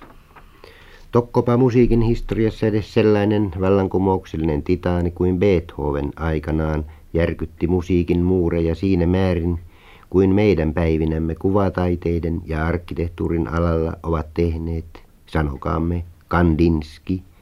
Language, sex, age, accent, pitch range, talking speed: Finnish, male, 50-69, native, 80-95 Hz, 90 wpm